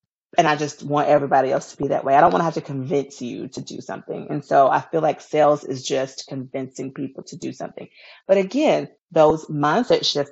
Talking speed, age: 225 wpm, 30-49